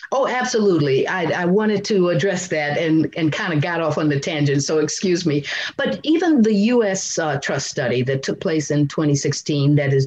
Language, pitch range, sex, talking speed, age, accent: English, 150-195 Hz, female, 205 wpm, 50-69, American